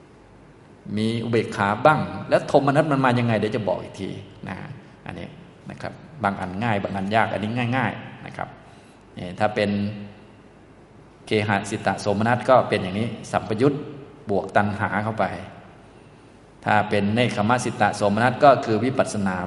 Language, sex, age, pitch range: Thai, male, 20-39, 105-125 Hz